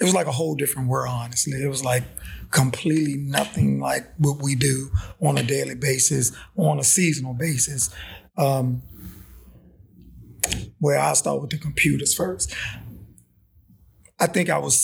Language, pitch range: English, 110-160 Hz